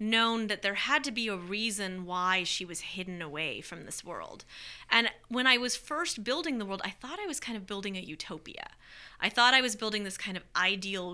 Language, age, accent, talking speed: English, 30-49, American, 225 wpm